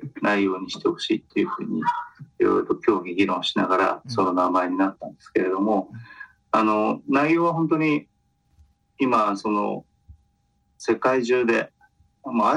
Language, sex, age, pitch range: Japanese, male, 40-59, 100-165 Hz